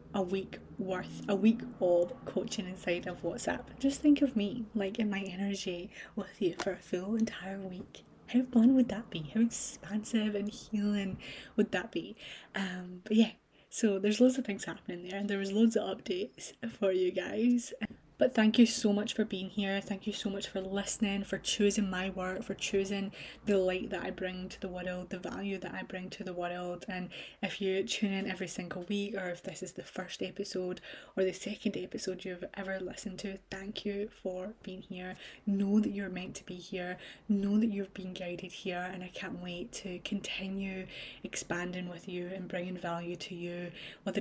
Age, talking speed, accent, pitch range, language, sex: 20-39, 200 wpm, British, 185-210 Hz, English, female